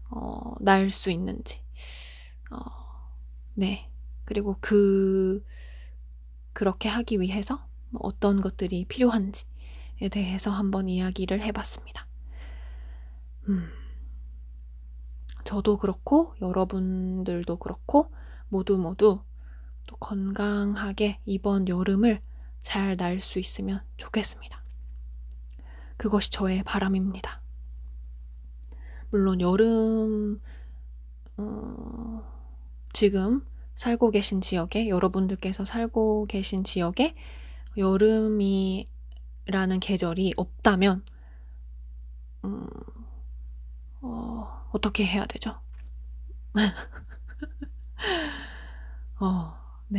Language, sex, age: Korean, female, 20-39